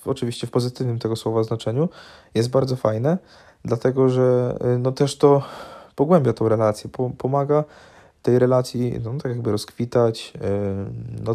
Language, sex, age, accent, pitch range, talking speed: Polish, male, 20-39, native, 110-125 Hz, 130 wpm